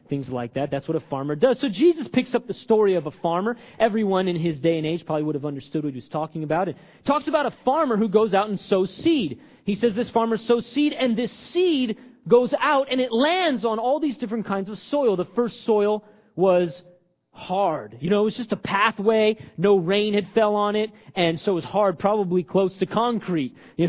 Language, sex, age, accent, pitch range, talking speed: English, male, 30-49, American, 165-225 Hz, 230 wpm